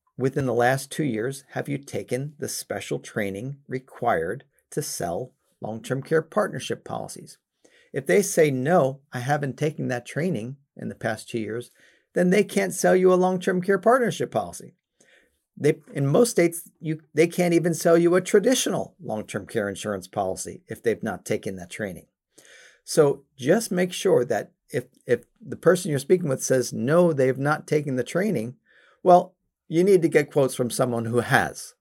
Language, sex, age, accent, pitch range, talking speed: English, male, 40-59, American, 130-180 Hz, 175 wpm